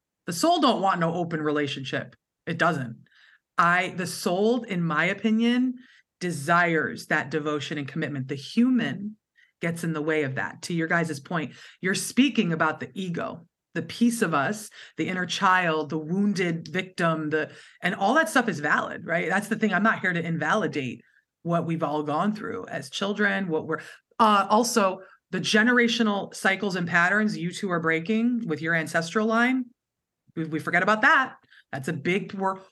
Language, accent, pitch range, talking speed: English, American, 165-220 Hz, 175 wpm